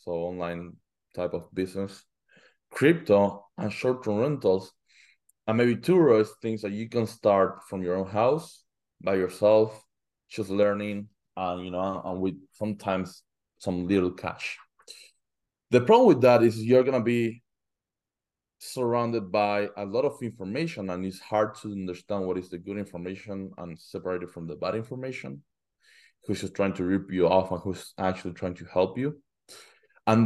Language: English